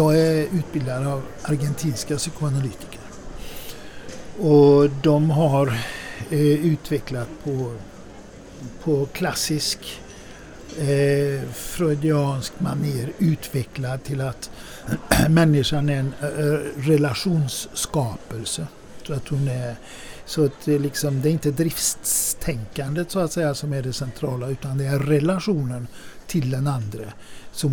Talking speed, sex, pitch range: 115 wpm, male, 130-155 Hz